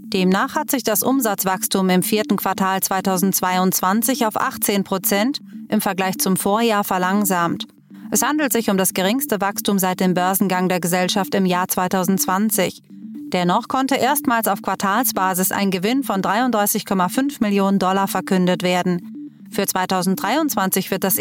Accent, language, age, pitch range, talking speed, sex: German, German, 30-49, 190-230 Hz, 140 wpm, female